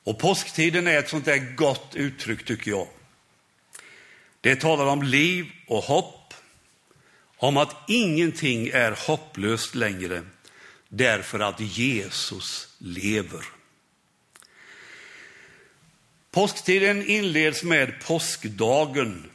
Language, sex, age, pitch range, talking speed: Swedish, male, 60-79, 115-165 Hz, 95 wpm